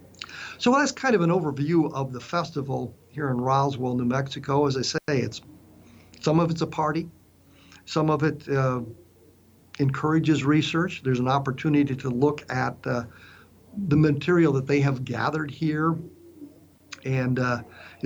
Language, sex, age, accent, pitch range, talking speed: English, male, 50-69, American, 130-160 Hz, 150 wpm